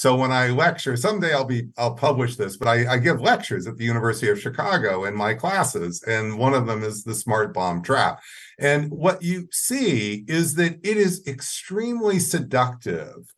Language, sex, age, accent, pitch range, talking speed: English, male, 50-69, American, 115-155 Hz, 190 wpm